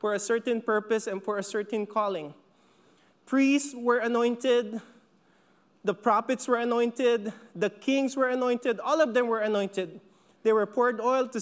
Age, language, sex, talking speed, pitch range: 20-39, English, male, 160 wpm, 205-255 Hz